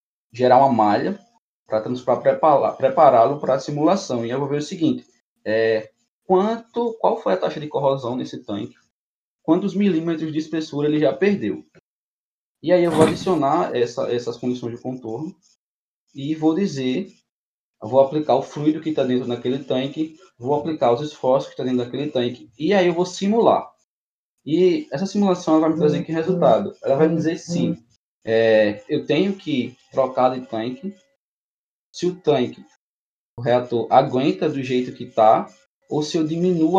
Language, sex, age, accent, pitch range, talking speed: Portuguese, male, 20-39, Brazilian, 120-160 Hz, 170 wpm